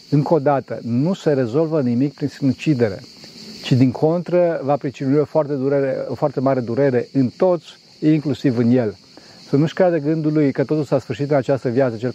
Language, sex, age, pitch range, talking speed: Romanian, male, 40-59, 125-155 Hz, 185 wpm